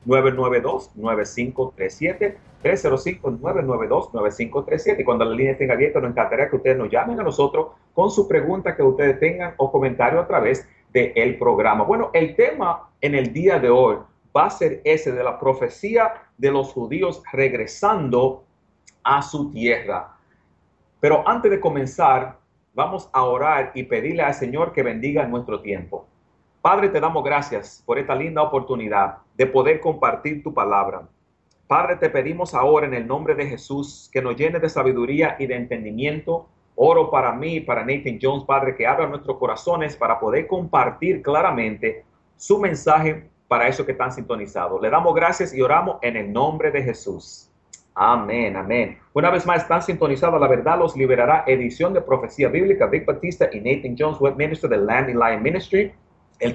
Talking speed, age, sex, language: 165 wpm, 40-59, male, English